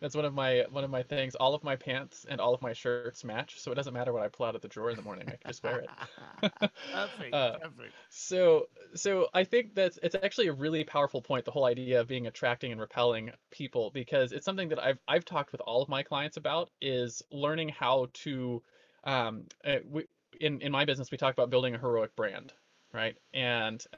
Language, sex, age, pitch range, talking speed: English, male, 20-39, 125-155 Hz, 225 wpm